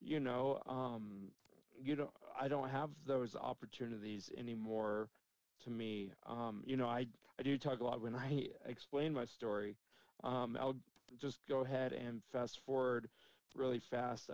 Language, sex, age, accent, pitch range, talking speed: English, male, 40-59, American, 110-130 Hz, 155 wpm